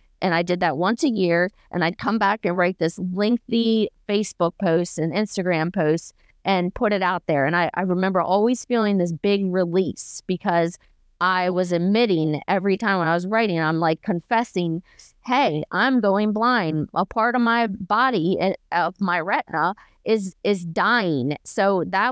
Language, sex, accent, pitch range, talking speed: English, female, American, 170-210 Hz, 175 wpm